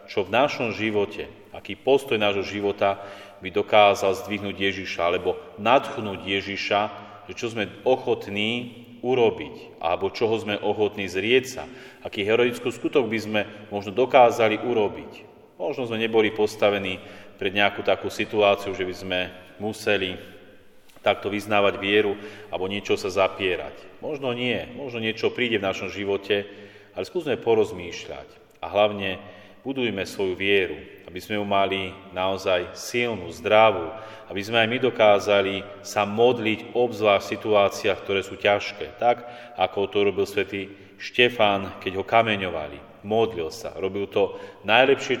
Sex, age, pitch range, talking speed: male, 40-59, 95-110 Hz, 135 wpm